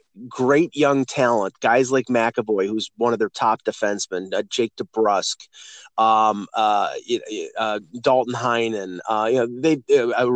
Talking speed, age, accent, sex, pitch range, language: 145 wpm, 30-49, American, male, 120-165 Hz, English